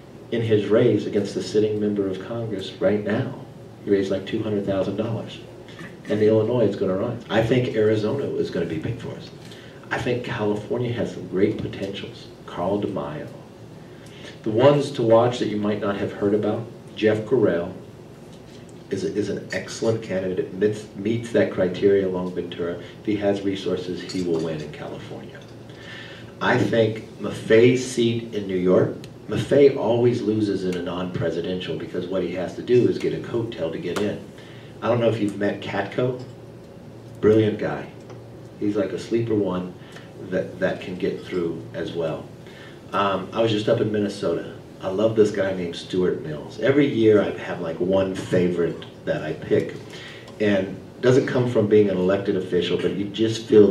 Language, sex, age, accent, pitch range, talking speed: English, male, 50-69, American, 95-115 Hz, 180 wpm